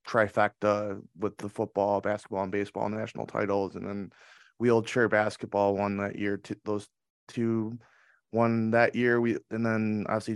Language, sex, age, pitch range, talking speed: English, male, 20-39, 105-120 Hz, 150 wpm